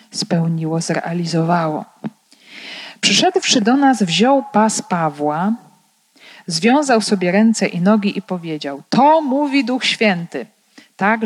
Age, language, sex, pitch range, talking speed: 40-59, Polish, female, 170-230 Hz, 105 wpm